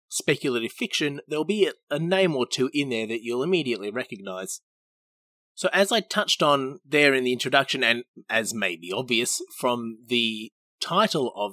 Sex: male